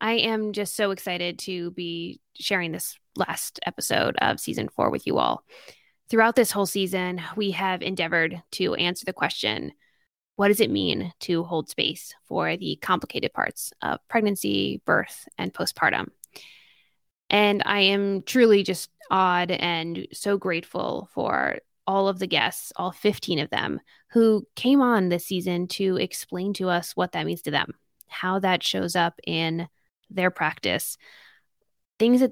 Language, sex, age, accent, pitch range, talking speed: English, female, 20-39, American, 170-200 Hz, 160 wpm